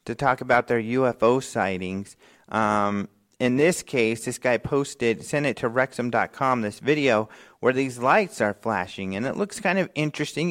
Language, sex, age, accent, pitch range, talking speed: English, male, 40-59, American, 110-145 Hz, 170 wpm